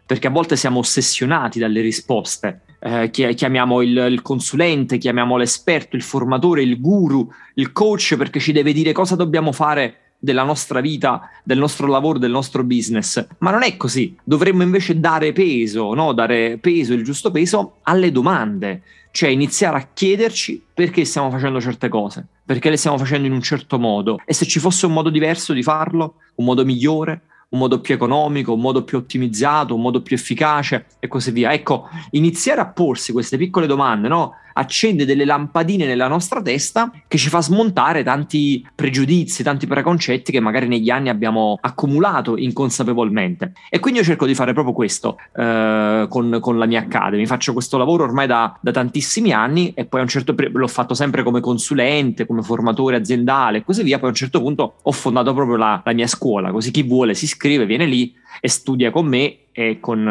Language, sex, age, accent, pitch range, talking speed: Italian, male, 30-49, native, 120-155 Hz, 185 wpm